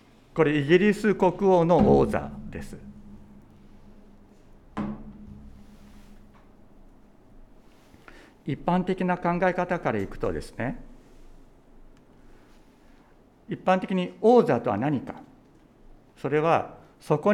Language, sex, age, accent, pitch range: Japanese, male, 60-79, native, 125-185 Hz